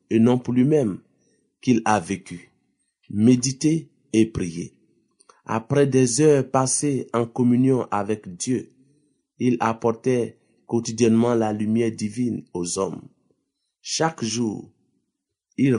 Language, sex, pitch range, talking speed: French, male, 110-130 Hz, 110 wpm